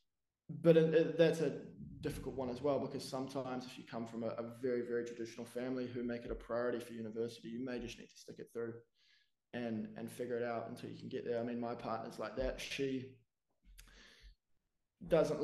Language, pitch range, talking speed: English, 115-140 Hz, 200 wpm